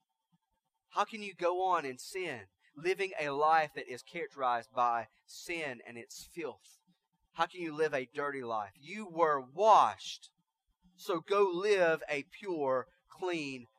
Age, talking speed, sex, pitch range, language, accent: 30-49, 150 wpm, male, 130-180 Hz, English, American